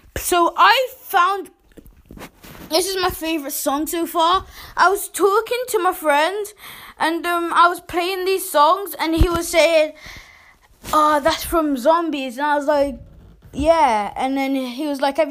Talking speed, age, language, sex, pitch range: 165 wpm, 20-39, English, female, 290-385 Hz